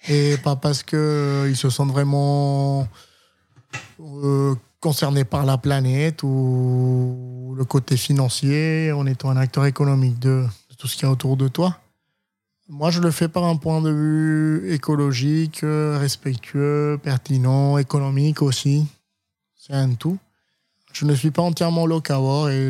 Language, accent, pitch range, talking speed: French, French, 135-155 Hz, 150 wpm